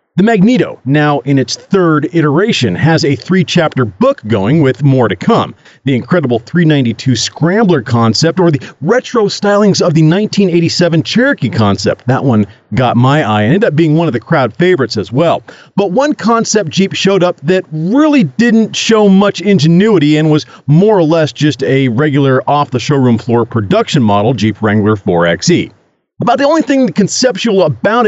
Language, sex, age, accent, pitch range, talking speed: English, male, 40-59, American, 130-195 Hz, 165 wpm